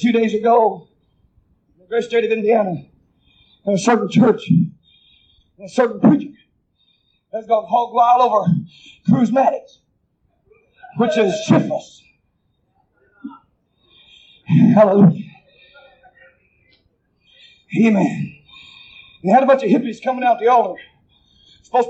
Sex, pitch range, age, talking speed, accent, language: male, 230-330 Hz, 40-59, 105 wpm, American, English